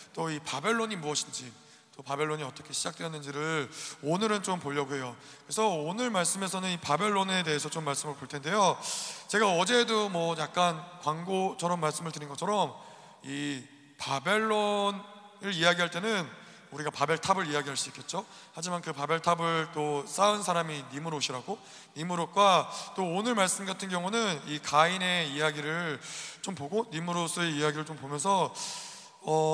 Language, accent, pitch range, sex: Korean, native, 155-200 Hz, male